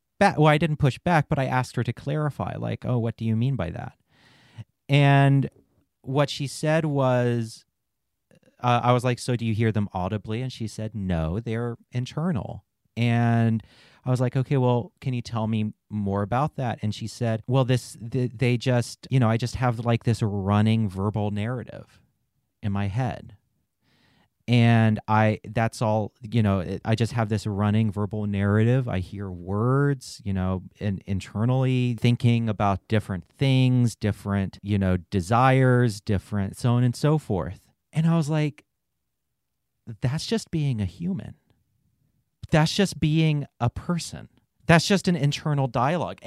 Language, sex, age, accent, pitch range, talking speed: English, male, 30-49, American, 105-135 Hz, 165 wpm